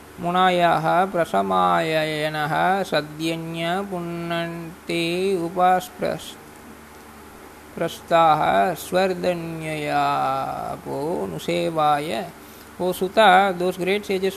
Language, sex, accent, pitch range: Tamil, male, native, 135-195 Hz